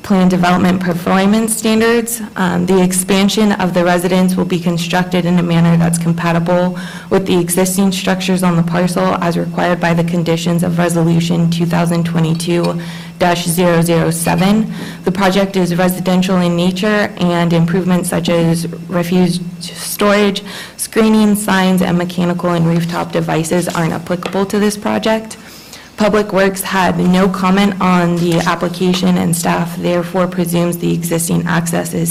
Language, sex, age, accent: English, female, 20-39, American